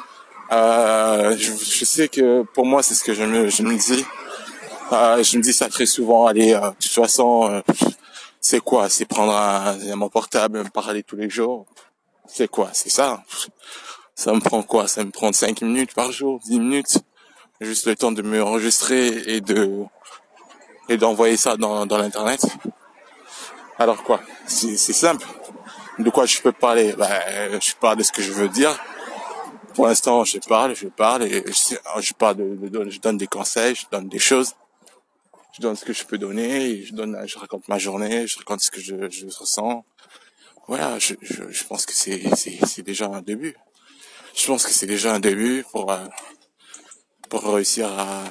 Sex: male